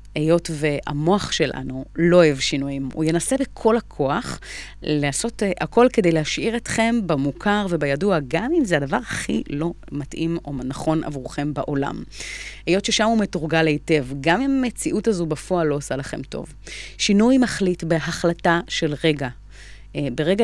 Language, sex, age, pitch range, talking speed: Hebrew, female, 30-49, 145-180 Hz, 140 wpm